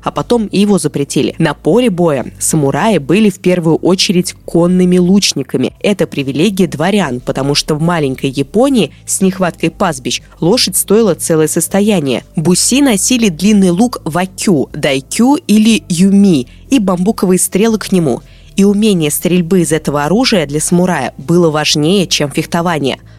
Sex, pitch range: female, 160-210 Hz